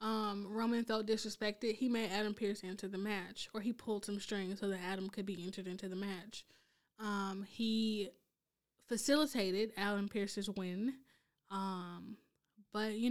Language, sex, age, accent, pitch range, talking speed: English, female, 10-29, American, 195-225 Hz, 155 wpm